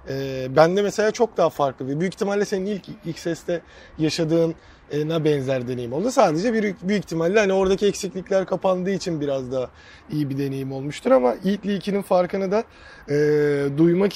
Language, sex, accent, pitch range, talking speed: Turkish, male, native, 165-210 Hz, 170 wpm